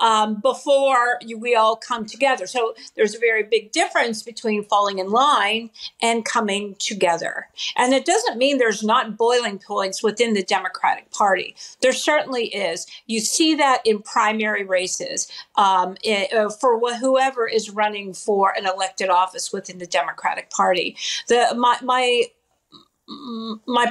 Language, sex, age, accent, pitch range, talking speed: English, female, 50-69, American, 205-270 Hz, 145 wpm